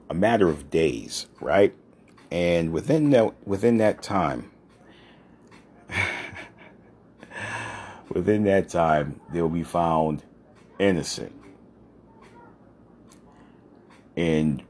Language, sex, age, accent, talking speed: English, male, 40-59, American, 75 wpm